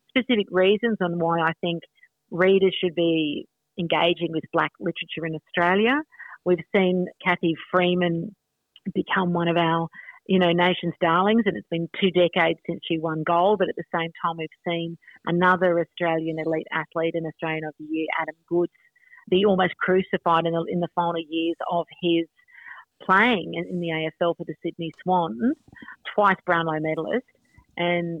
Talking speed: 165 wpm